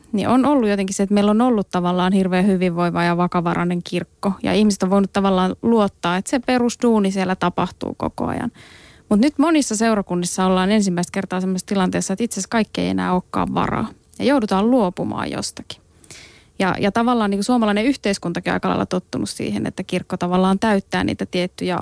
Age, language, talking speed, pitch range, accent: 20-39, Finnish, 180 wpm, 180-205 Hz, native